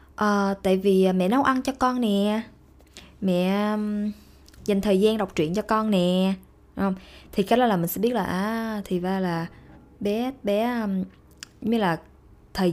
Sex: female